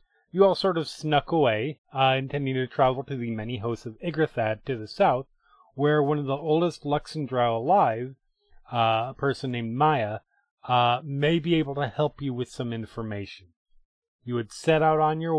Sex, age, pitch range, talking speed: male, 30-49, 120-155 Hz, 185 wpm